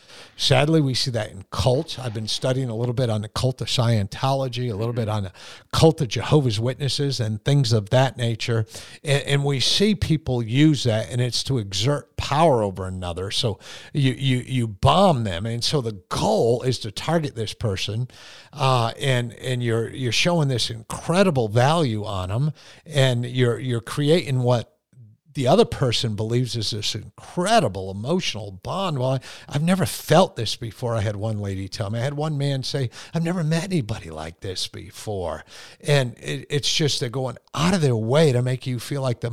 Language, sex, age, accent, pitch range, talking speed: English, male, 50-69, American, 115-145 Hz, 190 wpm